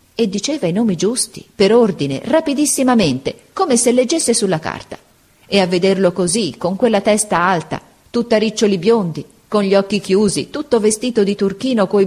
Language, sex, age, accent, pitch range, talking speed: Italian, female, 40-59, native, 160-225 Hz, 165 wpm